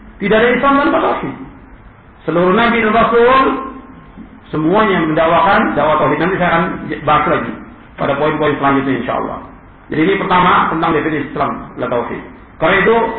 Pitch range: 165-210 Hz